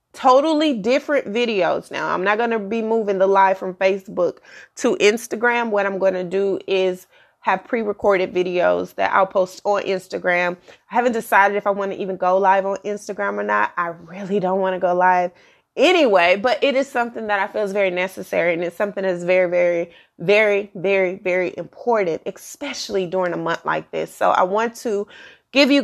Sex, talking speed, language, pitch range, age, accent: female, 195 wpm, English, 185-235 Hz, 30-49, American